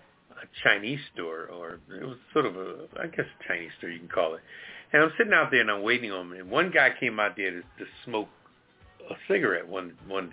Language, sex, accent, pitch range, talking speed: English, male, American, 100-145 Hz, 240 wpm